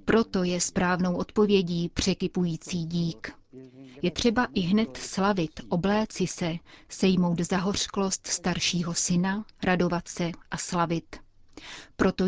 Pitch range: 175-200 Hz